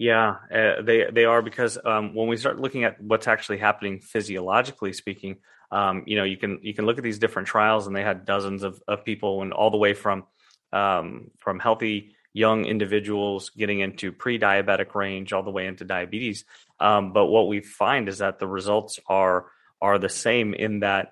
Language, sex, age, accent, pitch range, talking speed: English, male, 30-49, American, 95-110 Hz, 200 wpm